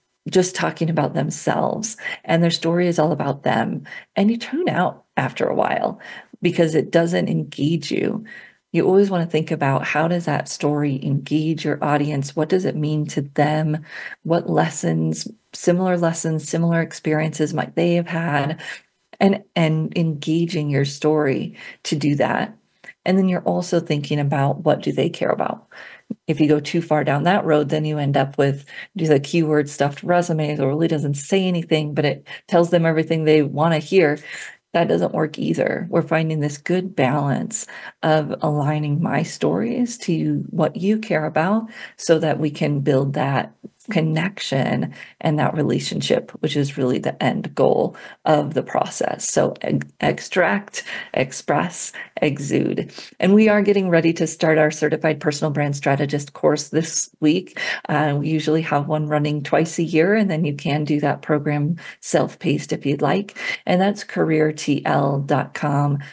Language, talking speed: English, 165 wpm